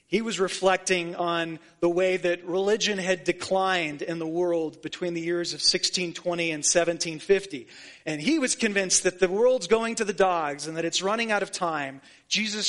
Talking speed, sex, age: 185 wpm, male, 30-49